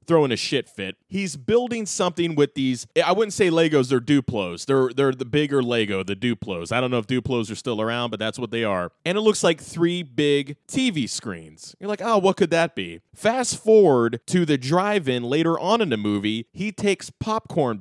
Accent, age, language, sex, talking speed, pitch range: American, 20-39, English, male, 210 wpm, 125-170 Hz